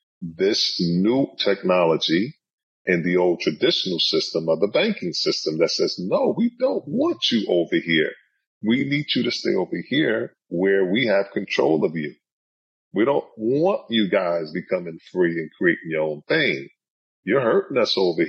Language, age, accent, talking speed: English, 40-59, American, 165 wpm